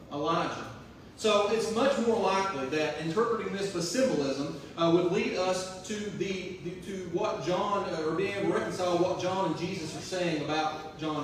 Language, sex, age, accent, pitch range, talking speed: English, male, 30-49, American, 165-200 Hz, 180 wpm